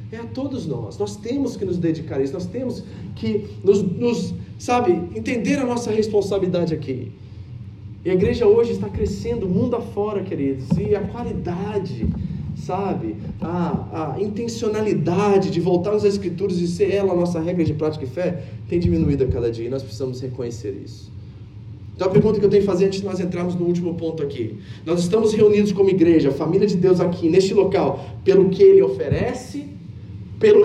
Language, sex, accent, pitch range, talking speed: Portuguese, male, Brazilian, 125-185 Hz, 185 wpm